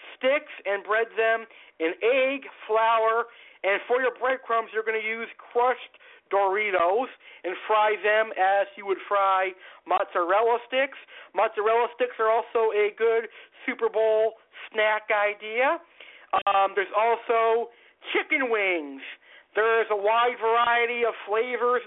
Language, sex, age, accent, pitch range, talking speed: English, male, 50-69, American, 210-255 Hz, 130 wpm